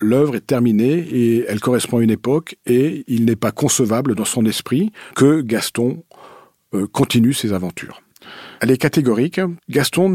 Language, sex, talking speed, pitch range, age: French, male, 155 wpm, 105-145 Hz, 50-69